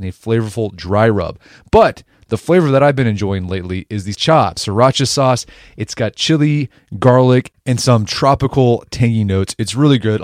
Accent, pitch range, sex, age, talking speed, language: American, 105-145 Hz, male, 30-49, 175 wpm, English